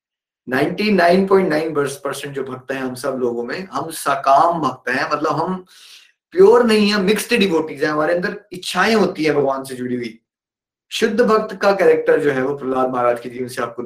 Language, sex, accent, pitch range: Hindi, male, native, 145-205 Hz